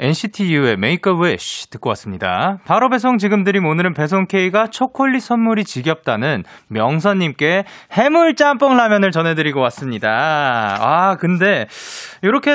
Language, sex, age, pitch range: Korean, male, 20-39, 160-250 Hz